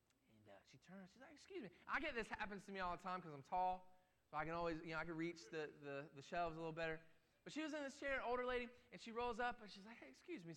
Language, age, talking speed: English, 20-39, 290 wpm